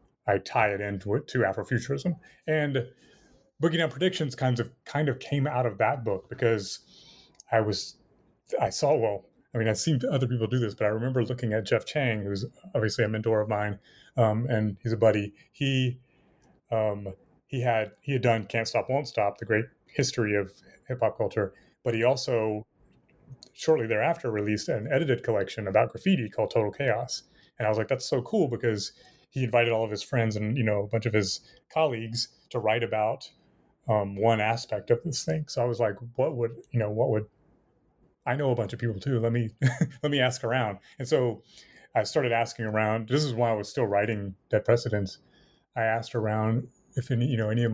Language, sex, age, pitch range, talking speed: English, male, 30-49, 110-130 Hz, 205 wpm